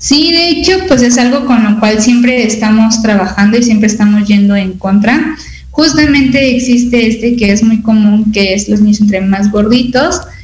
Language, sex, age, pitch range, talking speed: Spanish, female, 20-39, 210-250 Hz, 185 wpm